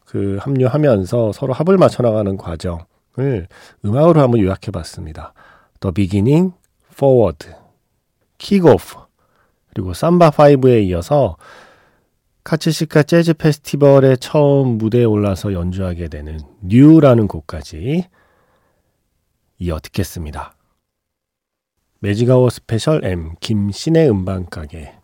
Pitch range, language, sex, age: 95-140 Hz, Korean, male, 40-59